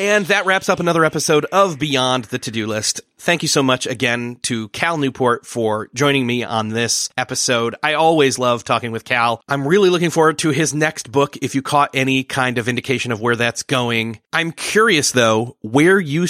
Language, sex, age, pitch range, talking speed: English, male, 30-49, 115-155 Hz, 205 wpm